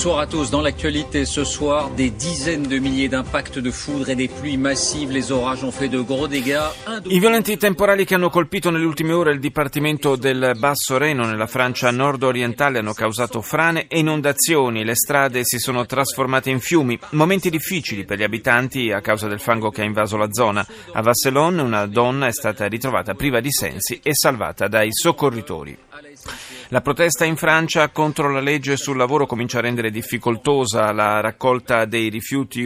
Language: Italian